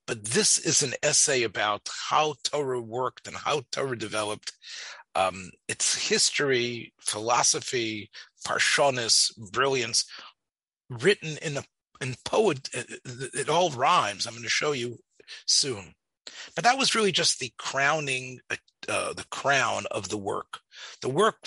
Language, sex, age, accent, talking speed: English, male, 40-59, American, 135 wpm